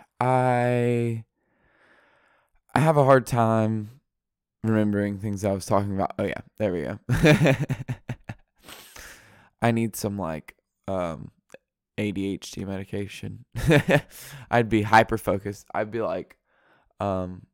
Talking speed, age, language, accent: 110 wpm, 20-39, English, American